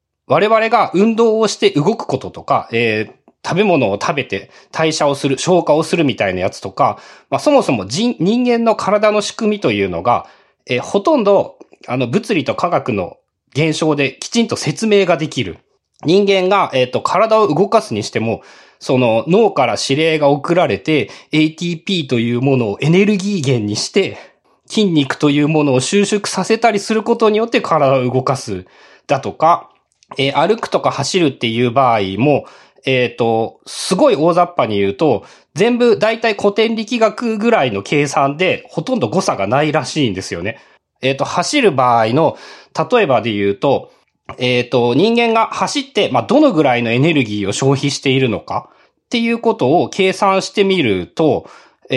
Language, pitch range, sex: Japanese, 135-215 Hz, male